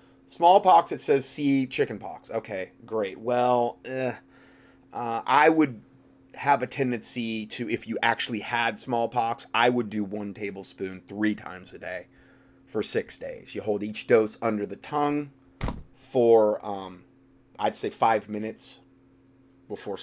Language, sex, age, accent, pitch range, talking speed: English, male, 30-49, American, 105-135 Hz, 145 wpm